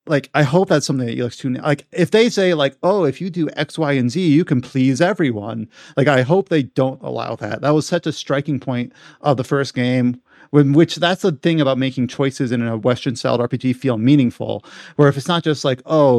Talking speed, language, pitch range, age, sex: 240 wpm, English, 125-155 Hz, 30-49, male